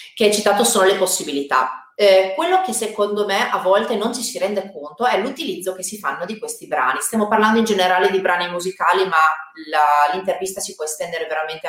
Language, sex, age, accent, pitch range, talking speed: Italian, female, 30-49, native, 175-240 Hz, 205 wpm